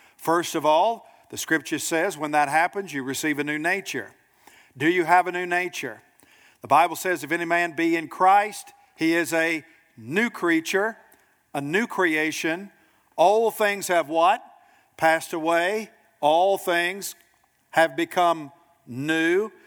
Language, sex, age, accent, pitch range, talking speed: English, male, 50-69, American, 165-210 Hz, 145 wpm